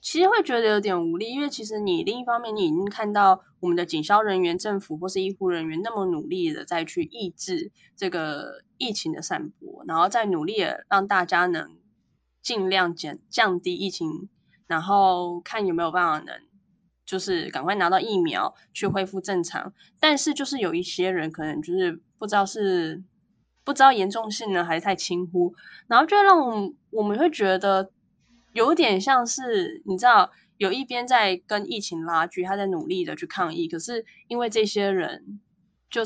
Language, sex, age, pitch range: Chinese, female, 10-29, 180-240 Hz